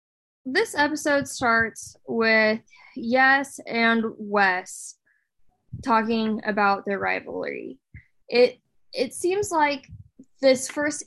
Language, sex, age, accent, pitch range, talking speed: English, female, 10-29, American, 220-255 Hz, 90 wpm